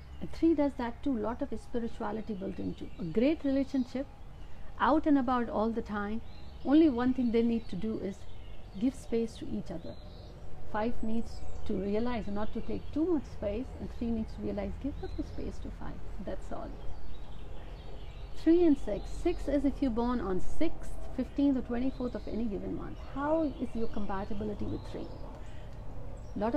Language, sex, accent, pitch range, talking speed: Hindi, female, native, 200-265 Hz, 180 wpm